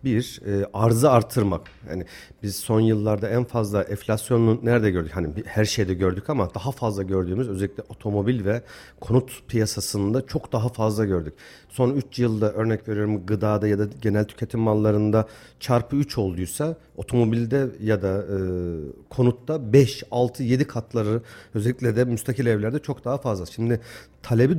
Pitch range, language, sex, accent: 105-140 Hz, Turkish, male, native